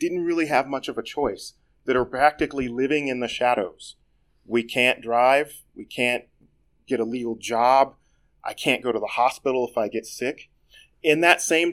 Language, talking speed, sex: English, 185 wpm, male